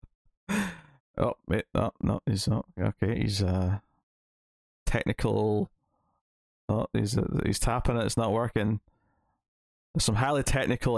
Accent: British